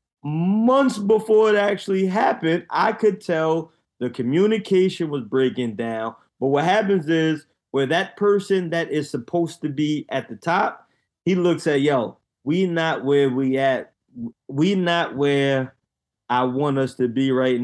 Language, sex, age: English, male, 20-39